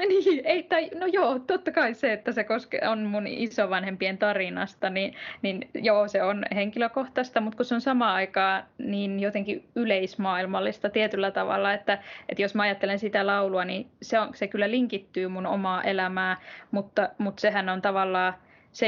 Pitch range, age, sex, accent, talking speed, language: 195-225 Hz, 20-39, female, native, 170 wpm, Finnish